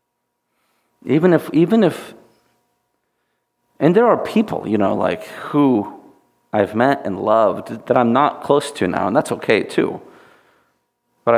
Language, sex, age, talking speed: English, male, 40-59, 140 wpm